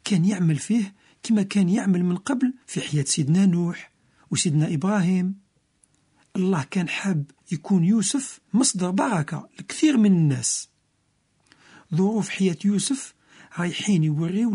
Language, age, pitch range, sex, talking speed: Italian, 50-69, 160-215 Hz, male, 120 wpm